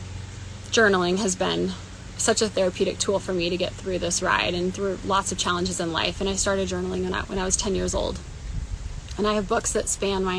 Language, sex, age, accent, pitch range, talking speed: English, female, 20-39, American, 180-210 Hz, 225 wpm